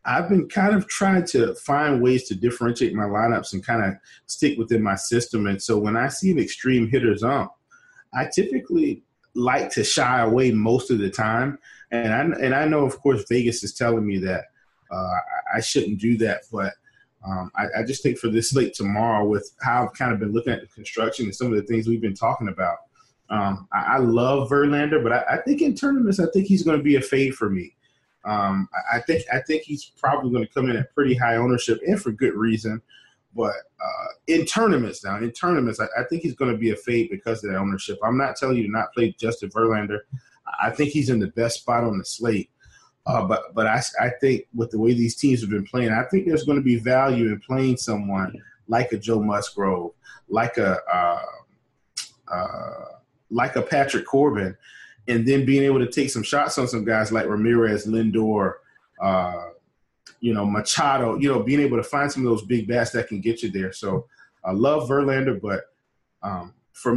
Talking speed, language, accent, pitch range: 215 wpm, English, American, 110-135 Hz